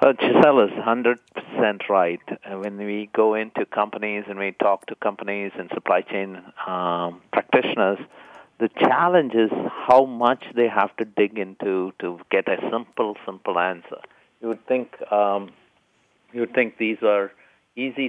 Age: 50-69